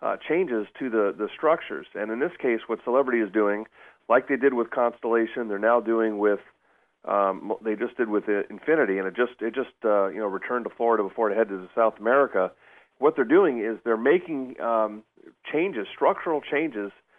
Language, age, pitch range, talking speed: English, 40-59, 105-125 Hz, 200 wpm